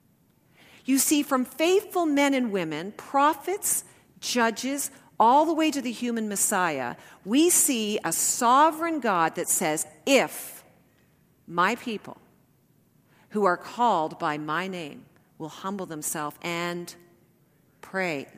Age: 50-69